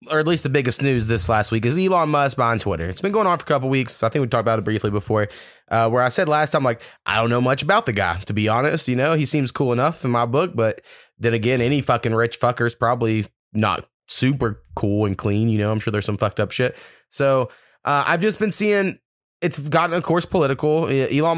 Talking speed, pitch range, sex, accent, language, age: 255 wpm, 115-145 Hz, male, American, English, 20-39